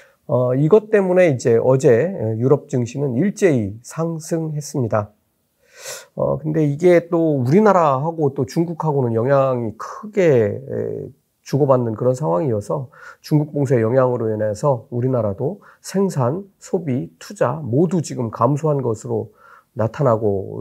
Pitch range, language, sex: 120-170 Hz, Korean, male